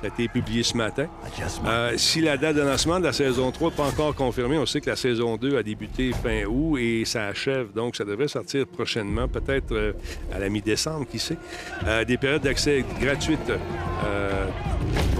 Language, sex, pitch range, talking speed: French, male, 110-135 Hz, 195 wpm